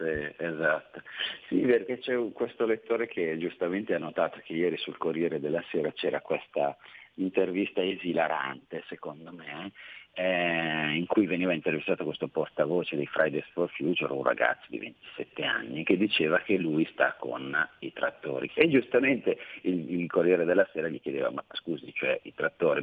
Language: Italian